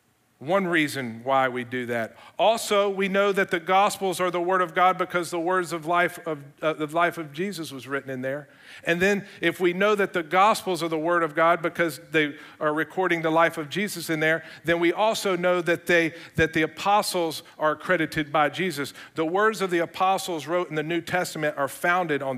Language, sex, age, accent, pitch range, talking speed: English, male, 50-69, American, 150-185 Hz, 215 wpm